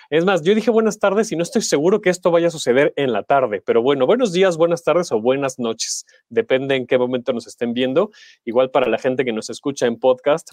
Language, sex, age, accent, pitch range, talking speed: Spanish, male, 30-49, Mexican, 120-170 Hz, 245 wpm